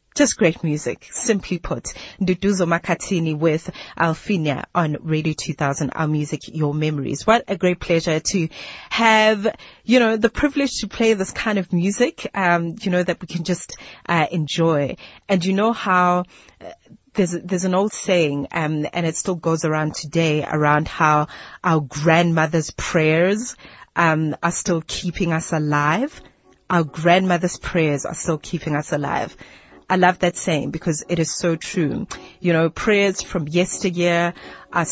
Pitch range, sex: 160-190 Hz, female